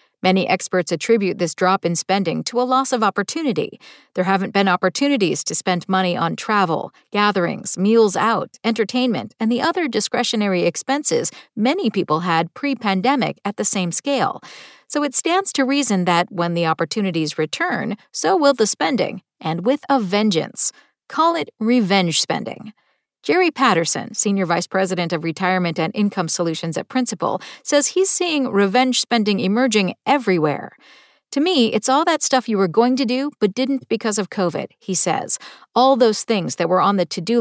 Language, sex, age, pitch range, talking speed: English, female, 40-59, 185-255 Hz, 170 wpm